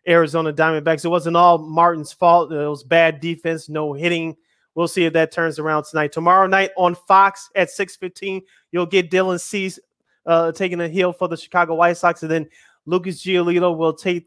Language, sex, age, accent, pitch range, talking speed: English, male, 30-49, American, 155-180 Hz, 195 wpm